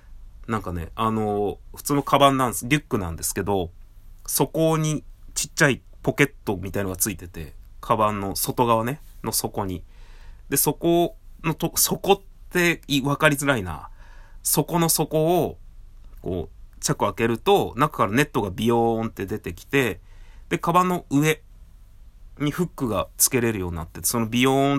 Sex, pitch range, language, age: male, 95-140 Hz, Japanese, 30-49